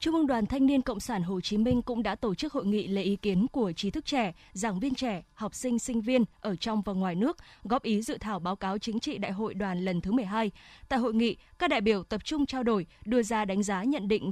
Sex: female